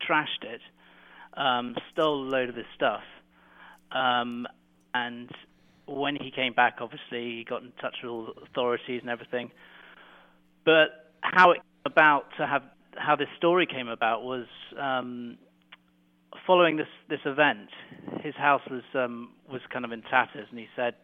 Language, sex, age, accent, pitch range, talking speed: English, male, 30-49, British, 115-130 Hz, 155 wpm